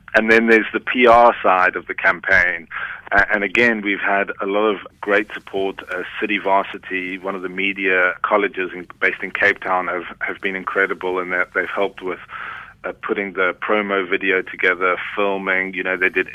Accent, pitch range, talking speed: British, 95-105 Hz, 190 wpm